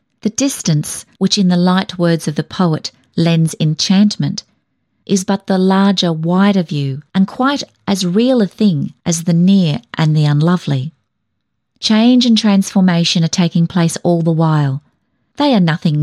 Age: 40-59